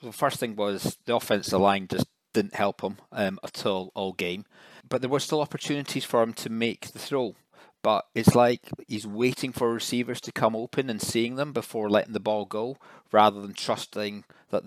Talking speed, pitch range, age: 200 wpm, 110-135 Hz, 40-59